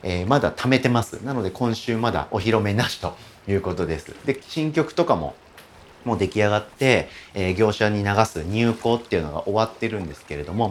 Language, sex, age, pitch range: Japanese, male, 40-59, 85-115 Hz